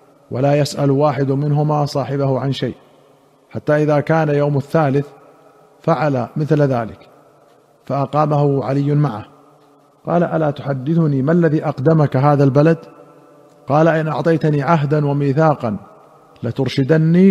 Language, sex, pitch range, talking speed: Arabic, male, 140-160 Hz, 110 wpm